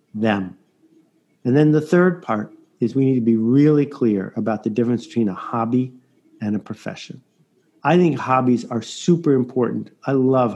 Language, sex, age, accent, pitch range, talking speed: English, male, 50-69, American, 125-175 Hz, 170 wpm